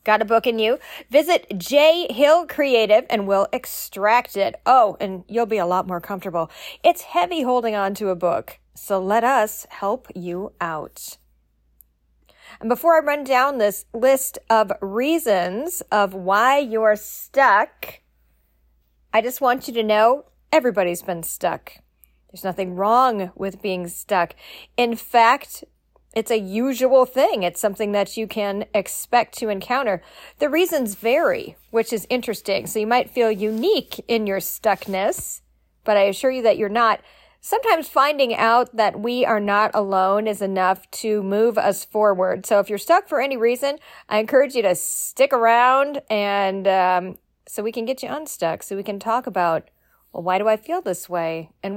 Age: 40-59